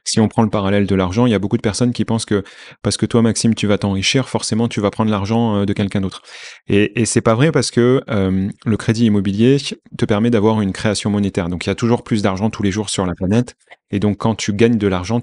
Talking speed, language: 270 wpm, French